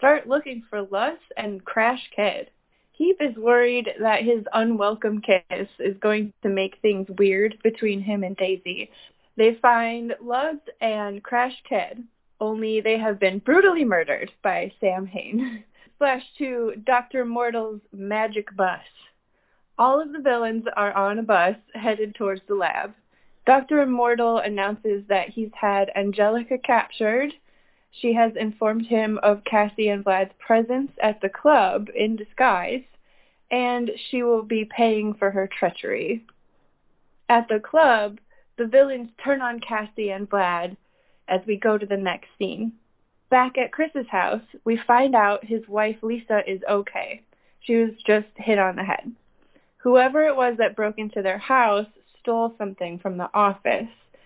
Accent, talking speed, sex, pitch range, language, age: American, 150 wpm, female, 205-245 Hz, English, 20-39